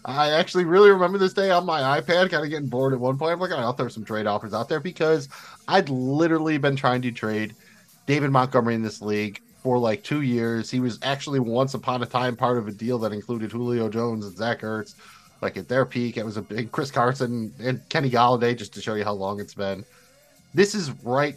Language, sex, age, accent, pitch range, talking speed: English, male, 30-49, American, 110-140 Hz, 235 wpm